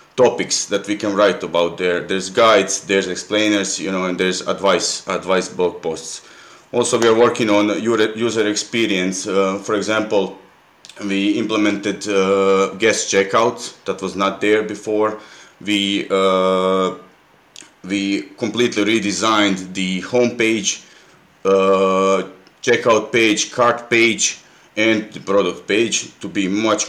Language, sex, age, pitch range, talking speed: English, male, 30-49, 95-110 Hz, 130 wpm